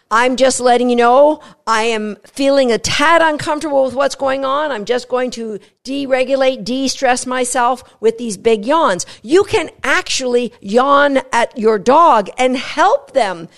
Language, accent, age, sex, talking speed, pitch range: English, American, 50-69, female, 160 wpm, 235-285 Hz